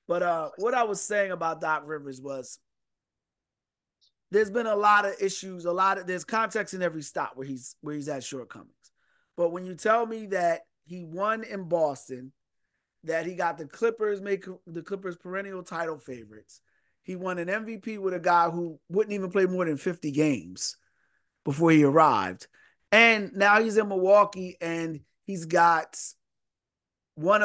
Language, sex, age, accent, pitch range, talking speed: English, male, 30-49, American, 155-195 Hz, 170 wpm